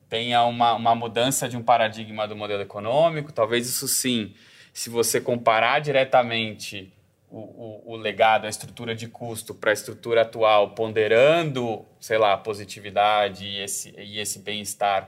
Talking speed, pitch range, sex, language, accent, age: 145 wpm, 110-135 Hz, male, Portuguese, Brazilian, 20-39